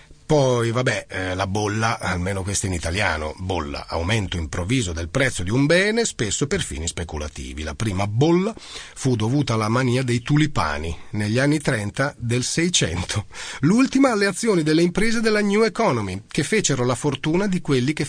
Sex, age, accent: male, 40-59, native